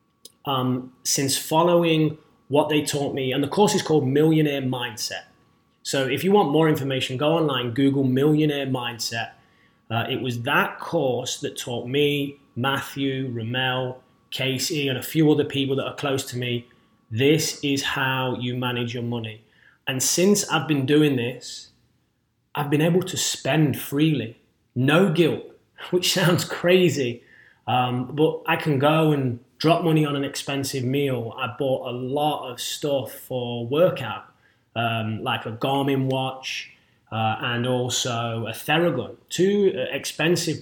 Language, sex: English, male